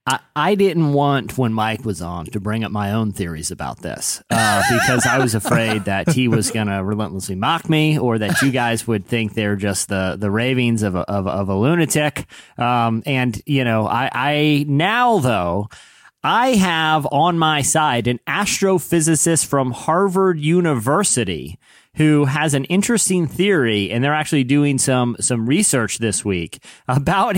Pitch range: 125-185 Hz